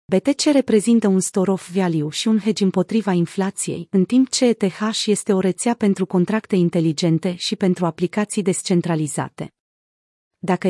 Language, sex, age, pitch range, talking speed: Romanian, female, 30-49, 175-220 Hz, 140 wpm